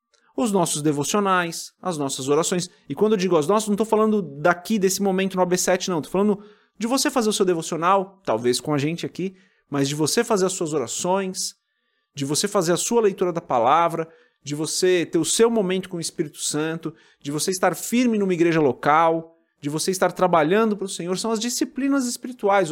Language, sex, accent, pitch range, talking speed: Portuguese, male, Brazilian, 150-220 Hz, 205 wpm